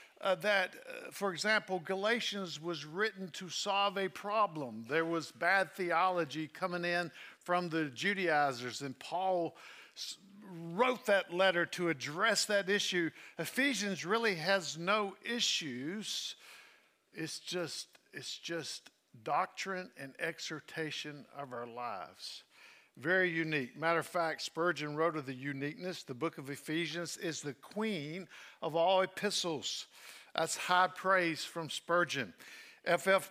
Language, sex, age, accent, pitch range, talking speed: English, male, 50-69, American, 160-200 Hz, 130 wpm